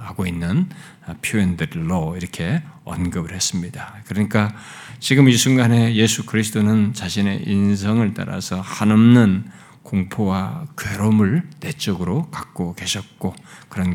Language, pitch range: Korean, 95-130 Hz